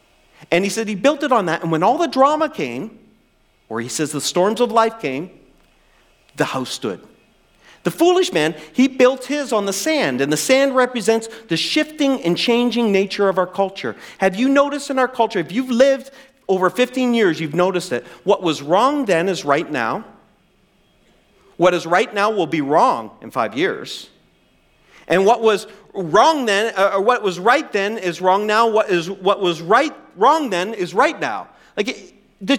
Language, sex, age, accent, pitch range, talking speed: English, male, 40-59, American, 170-255 Hz, 190 wpm